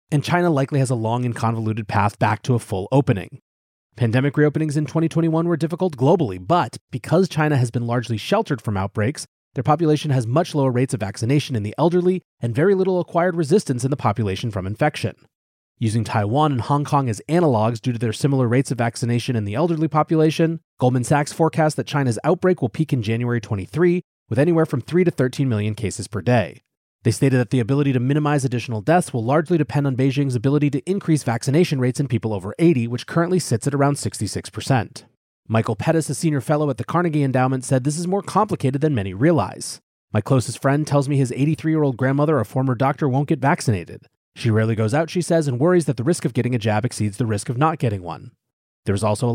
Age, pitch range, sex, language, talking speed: 30-49, 115-155 Hz, male, English, 215 wpm